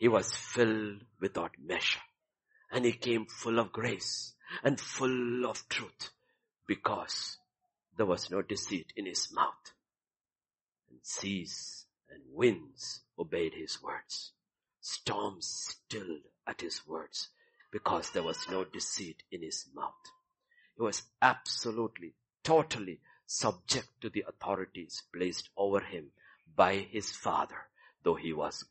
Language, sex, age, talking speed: English, male, 50-69, 125 wpm